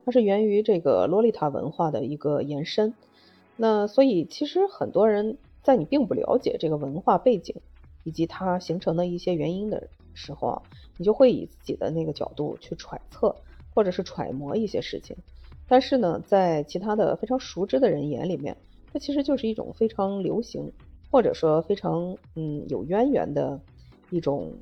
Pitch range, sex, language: 150-215 Hz, female, Chinese